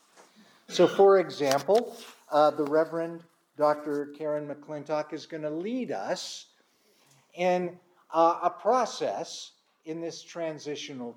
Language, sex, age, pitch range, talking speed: English, male, 50-69, 145-180 Hz, 115 wpm